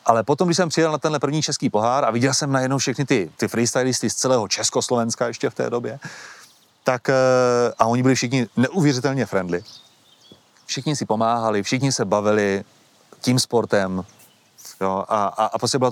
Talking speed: 175 wpm